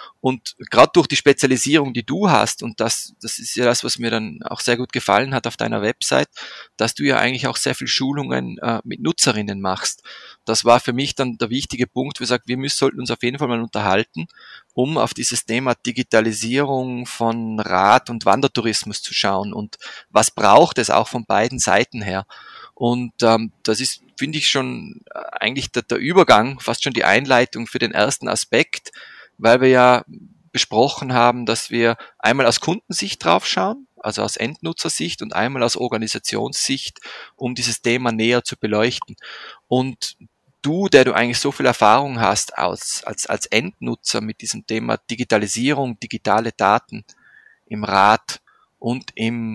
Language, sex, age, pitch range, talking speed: German, male, 20-39, 110-130 Hz, 175 wpm